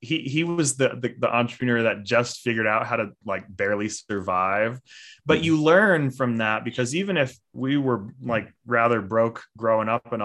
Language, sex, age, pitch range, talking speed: English, male, 20-39, 110-140 Hz, 185 wpm